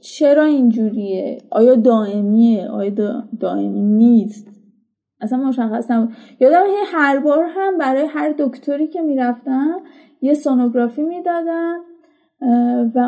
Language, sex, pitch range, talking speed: Persian, female, 245-320 Hz, 120 wpm